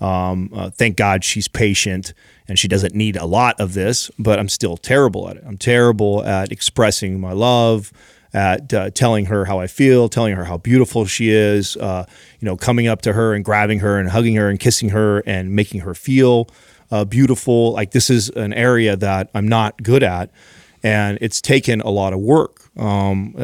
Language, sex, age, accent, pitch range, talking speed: English, male, 30-49, American, 100-115 Hz, 200 wpm